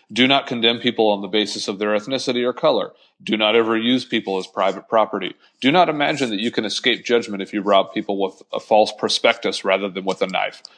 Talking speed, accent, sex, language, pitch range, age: 230 wpm, American, male, English, 100-130 Hz, 30-49